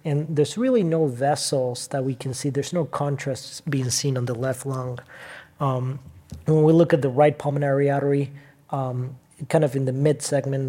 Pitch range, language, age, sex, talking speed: 130-150 Hz, English, 30-49, male, 185 wpm